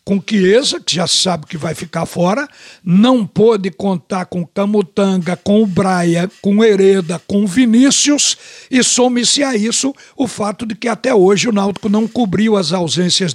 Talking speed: 170 wpm